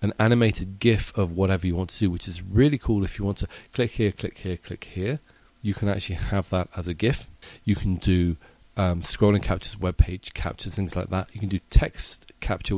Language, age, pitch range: English, 40-59, 90-105 Hz